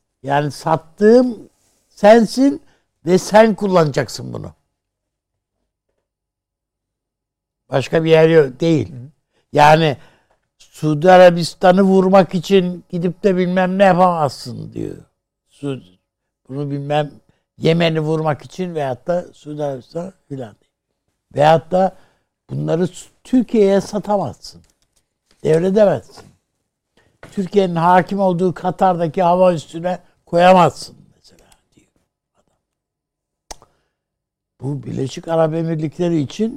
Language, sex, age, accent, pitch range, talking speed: Turkish, male, 60-79, native, 140-185 Hz, 85 wpm